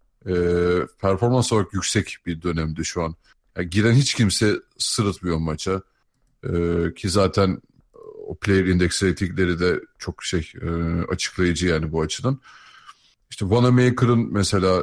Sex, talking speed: male, 130 wpm